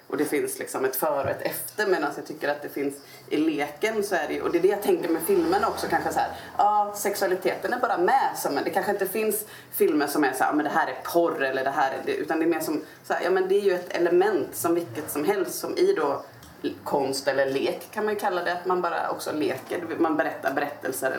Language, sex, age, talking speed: Swedish, female, 30-49, 270 wpm